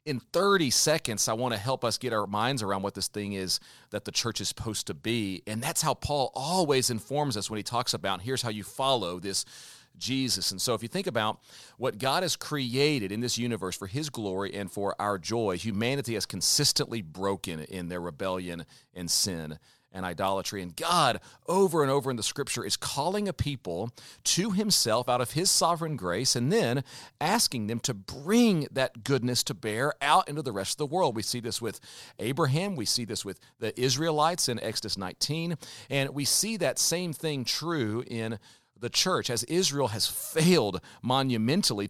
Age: 40-59